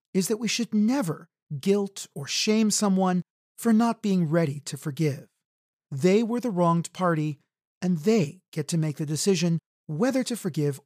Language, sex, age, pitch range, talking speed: English, male, 40-59, 155-205 Hz, 165 wpm